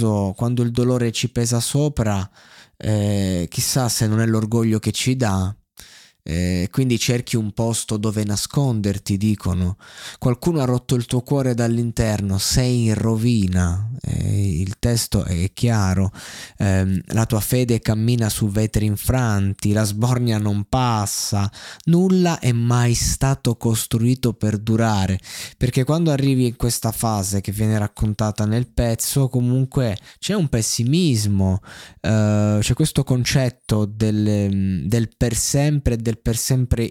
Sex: male